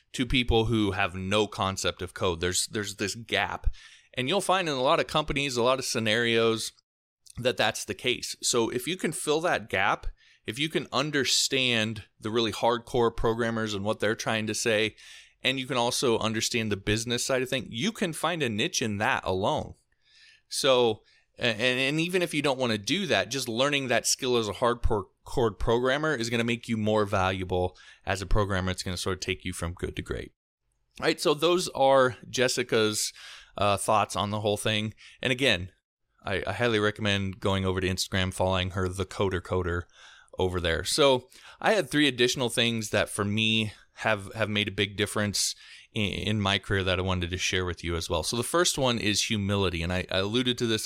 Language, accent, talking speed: English, American, 205 wpm